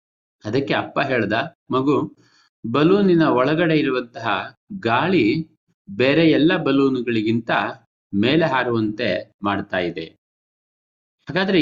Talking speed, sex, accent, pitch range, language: 85 wpm, male, native, 115-160 Hz, Kannada